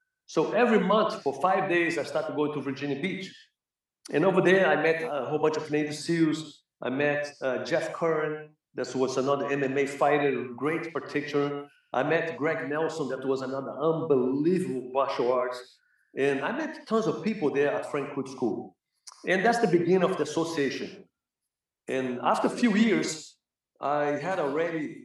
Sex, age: male, 50-69